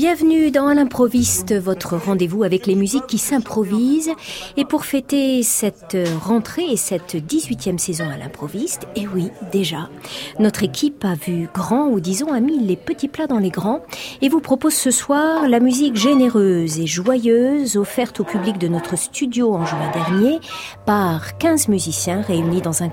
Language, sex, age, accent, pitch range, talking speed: French, female, 40-59, French, 180-265 Hz, 170 wpm